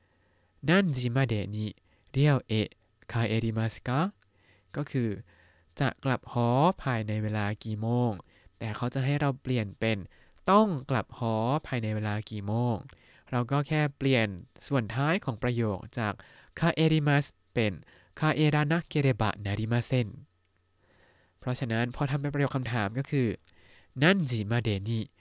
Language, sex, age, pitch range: Thai, male, 20-39, 105-140 Hz